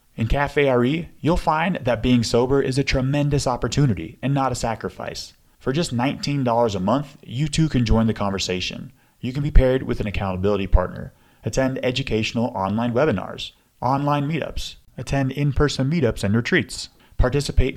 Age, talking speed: 30-49, 160 wpm